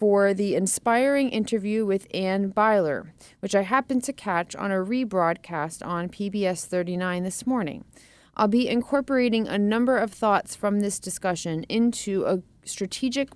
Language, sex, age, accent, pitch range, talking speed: English, female, 30-49, American, 185-230 Hz, 145 wpm